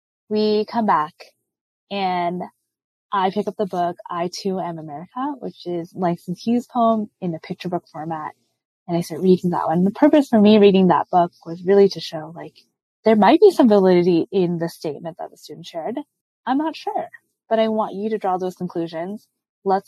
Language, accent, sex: English, American, female